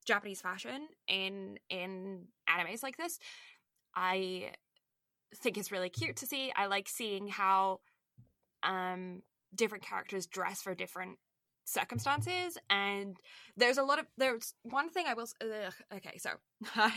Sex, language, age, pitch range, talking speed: female, English, 20-39, 185-235 Hz, 135 wpm